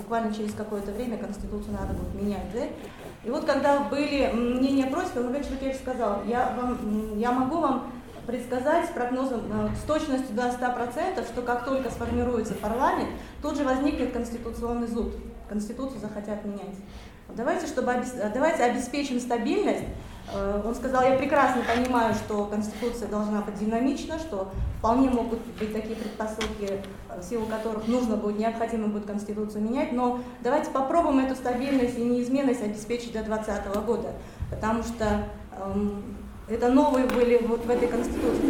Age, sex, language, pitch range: 30-49, female, Russian, 225-270 Hz